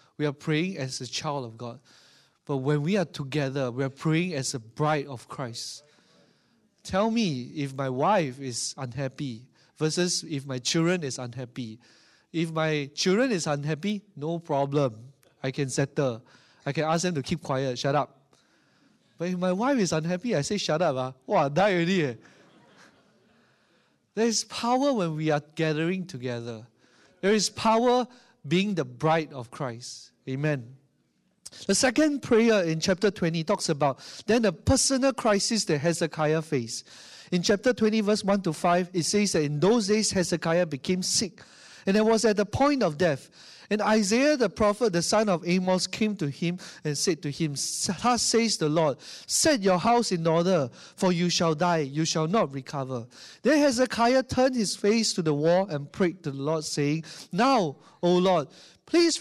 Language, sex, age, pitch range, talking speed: English, male, 20-39, 145-205 Hz, 175 wpm